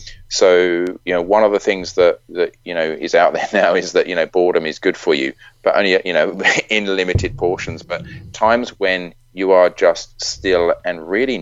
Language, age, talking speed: English, 30-49, 210 wpm